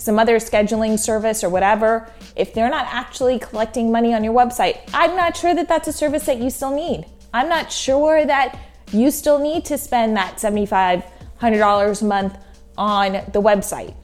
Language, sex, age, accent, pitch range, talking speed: English, female, 20-39, American, 200-240 Hz, 180 wpm